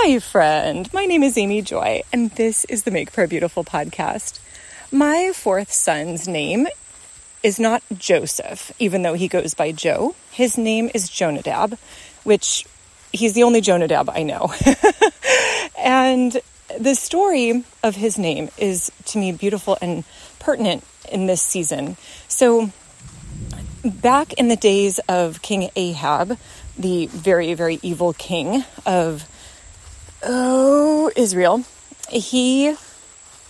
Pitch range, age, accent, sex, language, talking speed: 175-240 Hz, 30-49, American, female, English, 130 wpm